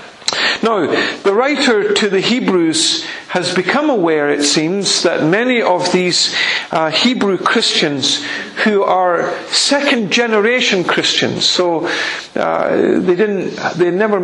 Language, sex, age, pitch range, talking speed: English, male, 50-69, 180-235 Hz, 115 wpm